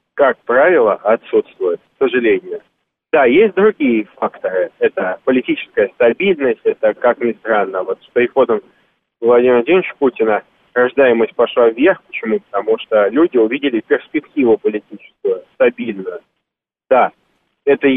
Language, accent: Russian, native